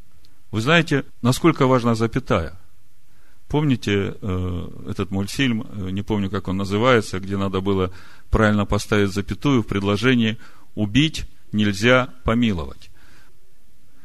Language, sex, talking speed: Russian, male, 105 wpm